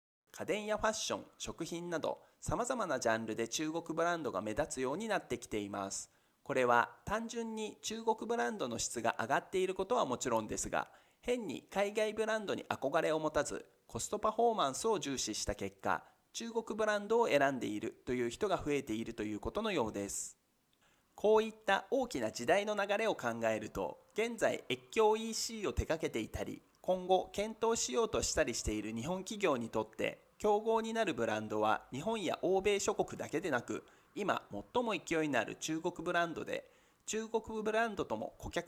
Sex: male